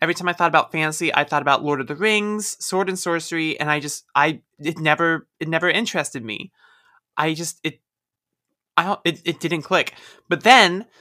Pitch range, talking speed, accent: 140-170 Hz, 195 wpm, American